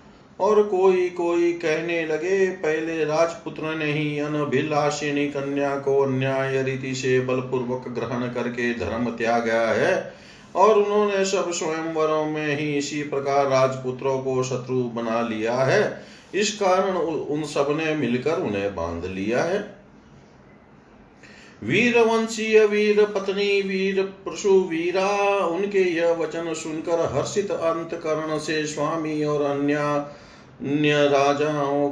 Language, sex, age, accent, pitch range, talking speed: Hindi, male, 40-59, native, 130-165 Hz, 110 wpm